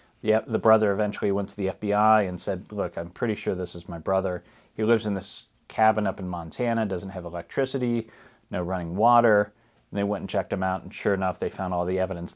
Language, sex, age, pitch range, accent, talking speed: English, male, 40-59, 95-120 Hz, American, 230 wpm